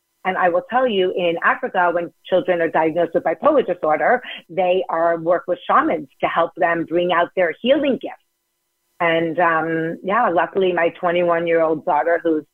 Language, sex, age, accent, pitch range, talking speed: English, female, 40-59, American, 165-200 Hz, 170 wpm